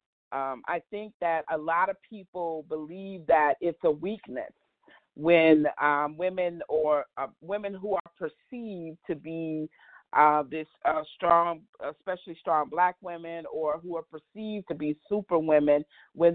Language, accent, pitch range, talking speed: English, American, 160-205 Hz, 150 wpm